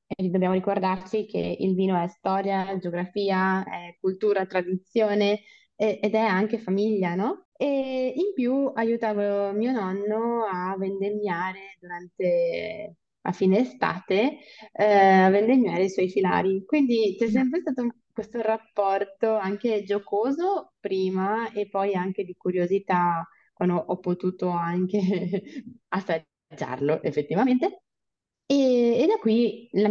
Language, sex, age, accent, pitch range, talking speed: Italian, female, 20-39, native, 185-230 Hz, 120 wpm